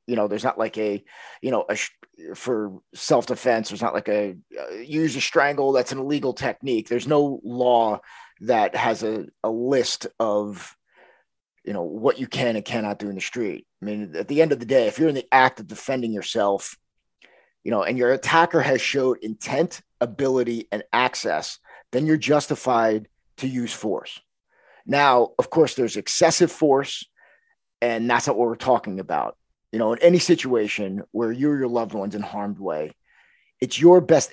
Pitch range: 110-155 Hz